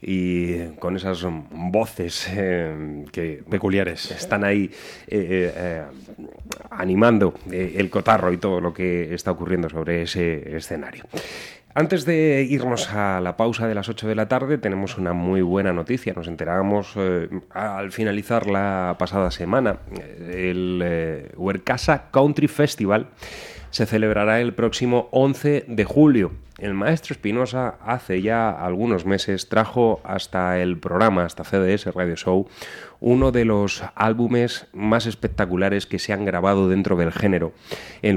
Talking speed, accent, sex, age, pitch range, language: 140 wpm, Spanish, male, 30-49, 90-110 Hz, Spanish